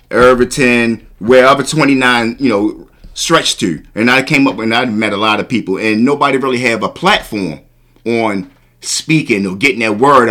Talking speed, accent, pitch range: 180 wpm, American, 110-125 Hz